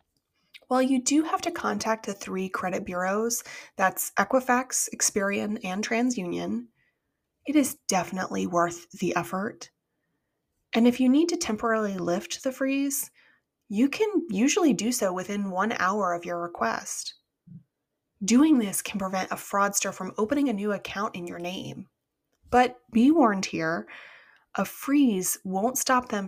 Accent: American